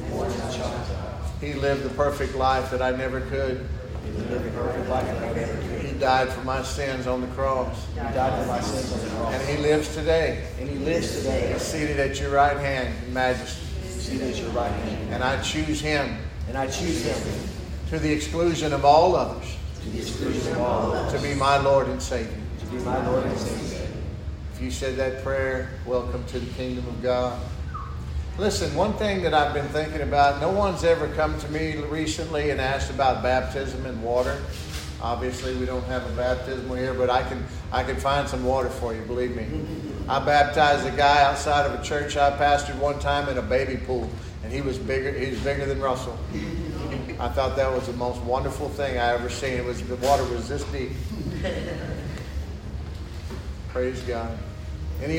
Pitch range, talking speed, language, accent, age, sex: 85-140 Hz, 175 wpm, English, American, 50-69, male